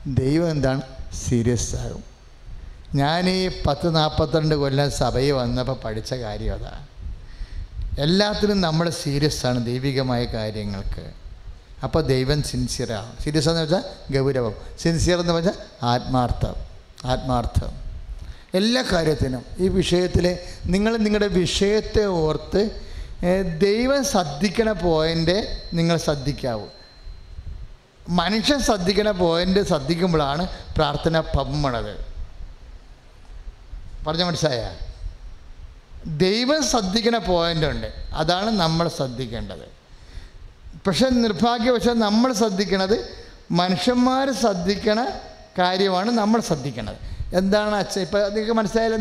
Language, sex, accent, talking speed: English, male, Indian, 65 wpm